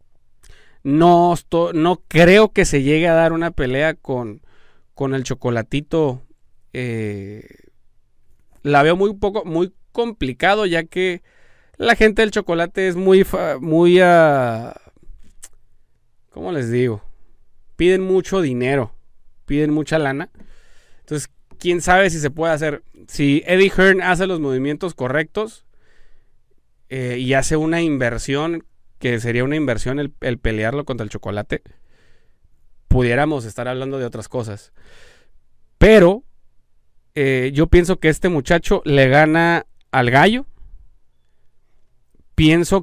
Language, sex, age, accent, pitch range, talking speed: Spanish, male, 30-49, Mexican, 125-175 Hz, 120 wpm